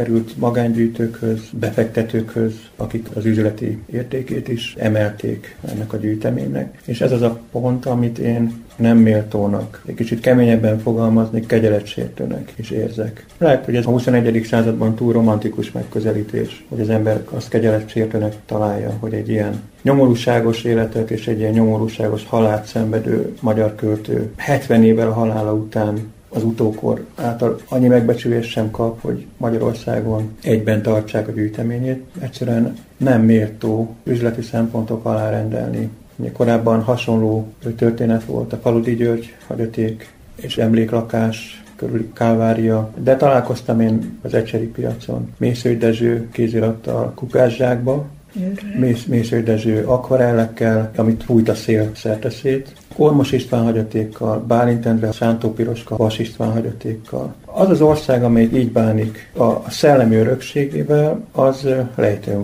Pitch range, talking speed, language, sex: 110-120 Hz, 125 wpm, Hungarian, male